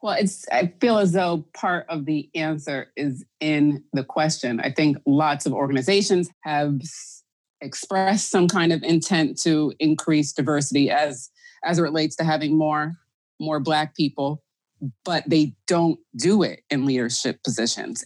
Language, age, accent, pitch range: English, 30-49, American, 140-170 Hz